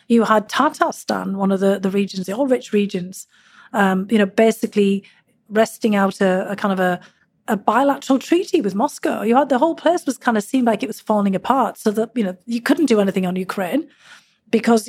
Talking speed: 215 wpm